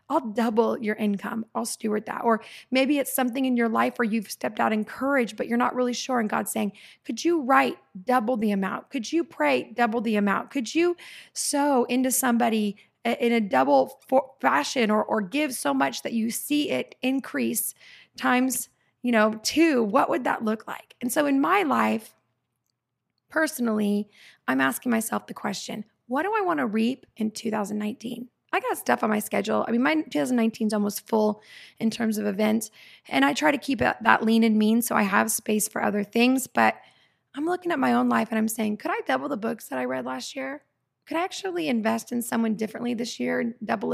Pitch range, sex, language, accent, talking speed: 215-270 Hz, female, English, American, 205 wpm